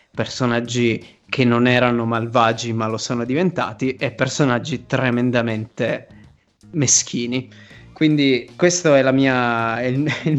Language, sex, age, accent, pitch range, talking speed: Italian, male, 20-39, native, 110-130 Hz, 110 wpm